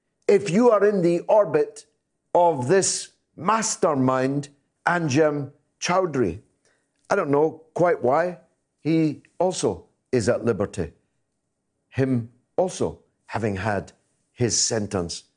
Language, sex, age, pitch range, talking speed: English, male, 50-69, 140-205 Hz, 105 wpm